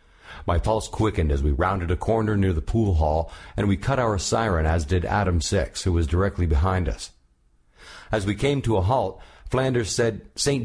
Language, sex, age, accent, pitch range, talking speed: English, male, 50-69, American, 85-115 Hz, 195 wpm